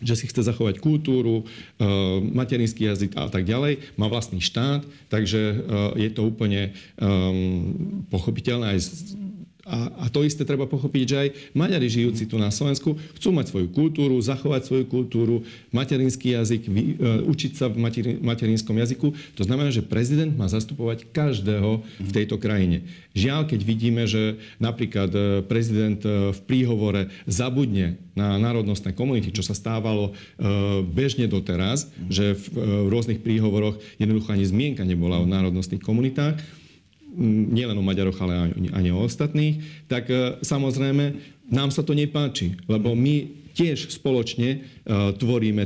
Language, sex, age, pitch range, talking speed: Slovak, male, 40-59, 100-130 Hz, 140 wpm